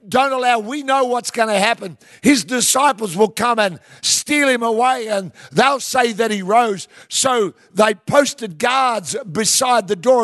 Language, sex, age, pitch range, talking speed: English, male, 60-79, 185-250 Hz, 170 wpm